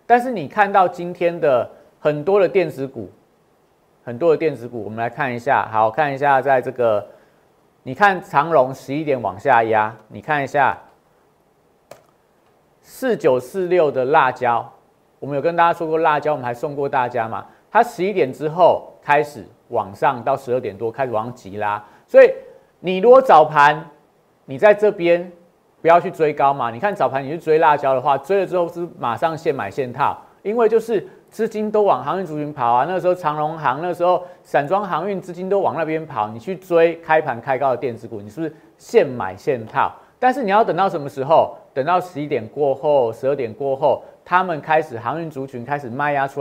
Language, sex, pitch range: Chinese, male, 130-180 Hz